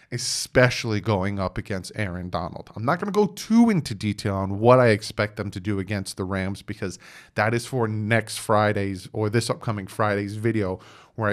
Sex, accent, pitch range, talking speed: male, American, 105-130 Hz, 190 wpm